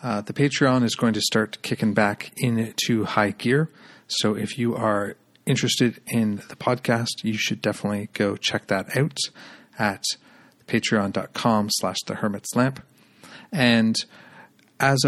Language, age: English, 40-59